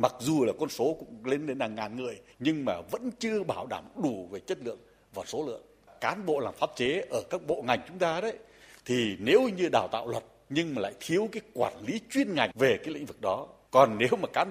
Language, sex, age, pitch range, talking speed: Vietnamese, male, 60-79, 100-145 Hz, 250 wpm